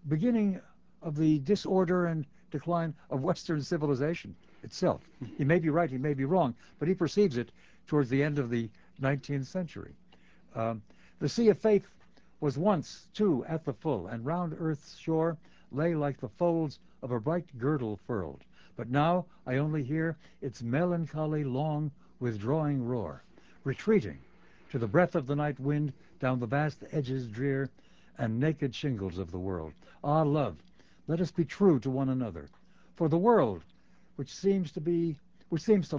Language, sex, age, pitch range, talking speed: English, male, 60-79, 130-175 Hz, 170 wpm